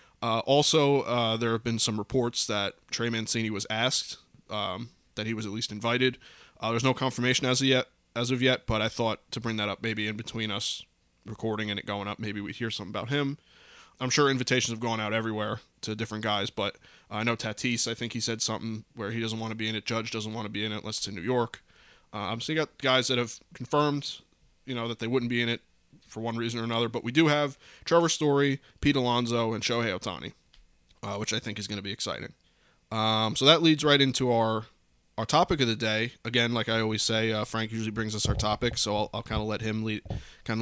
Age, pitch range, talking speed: 20-39, 110-130 Hz, 240 wpm